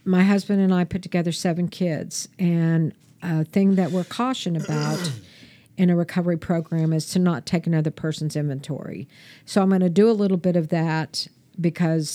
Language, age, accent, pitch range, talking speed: English, 50-69, American, 155-180 Hz, 185 wpm